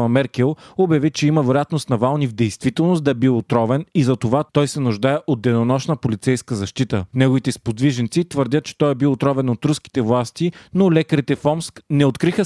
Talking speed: 185 wpm